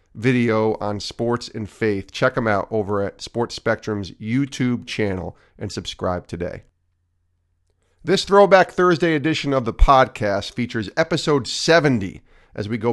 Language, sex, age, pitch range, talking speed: English, male, 40-59, 100-120 Hz, 140 wpm